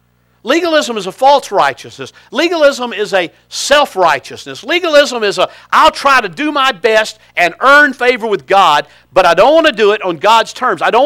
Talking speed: 190 wpm